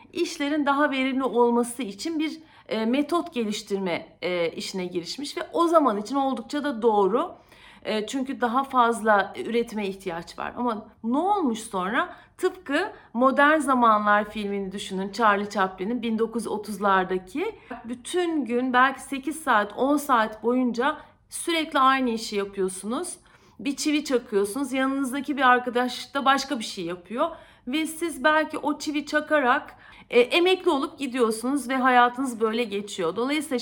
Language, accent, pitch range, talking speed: Turkish, native, 220-290 Hz, 130 wpm